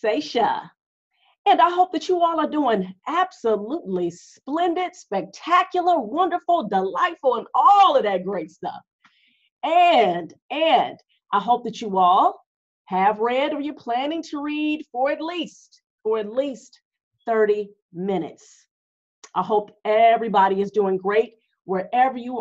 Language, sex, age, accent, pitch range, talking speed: English, female, 40-59, American, 195-285 Hz, 135 wpm